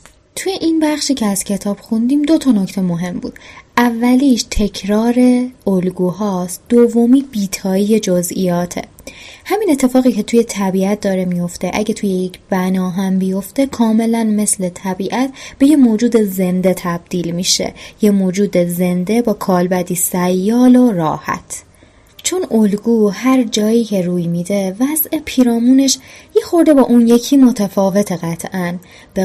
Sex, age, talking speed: female, 20-39, 135 wpm